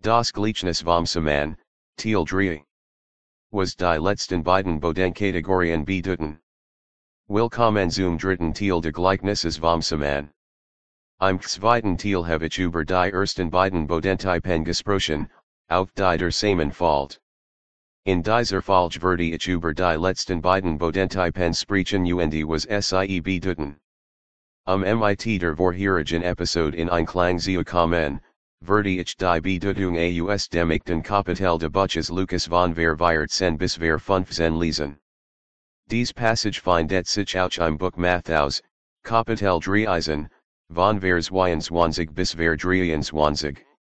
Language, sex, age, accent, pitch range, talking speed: English, male, 40-59, American, 80-95 Hz, 125 wpm